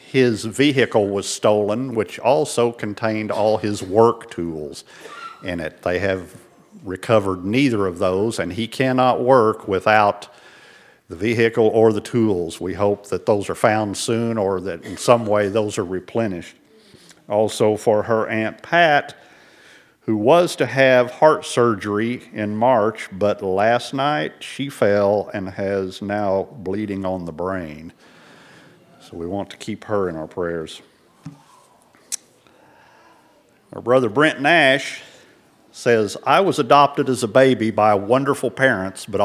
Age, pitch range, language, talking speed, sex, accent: 50-69, 100-120 Hz, English, 140 wpm, male, American